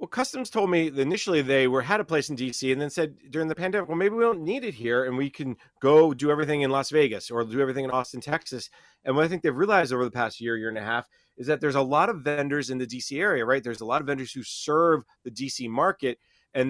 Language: English